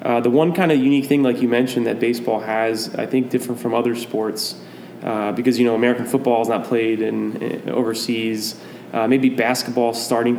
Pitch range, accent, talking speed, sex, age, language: 115-125 Hz, American, 200 wpm, male, 20-39, English